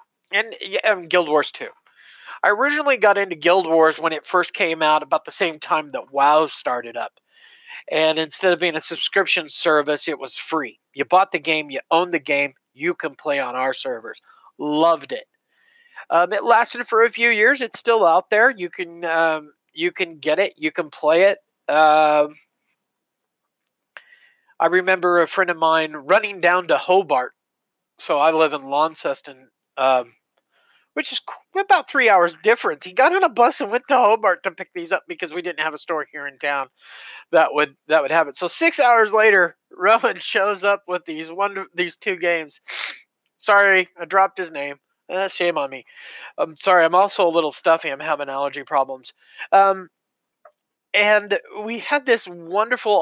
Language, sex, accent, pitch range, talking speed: English, male, American, 155-210 Hz, 180 wpm